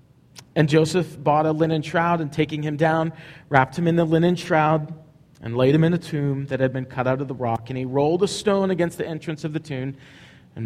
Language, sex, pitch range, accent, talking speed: English, male, 145-190 Hz, American, 235 wpm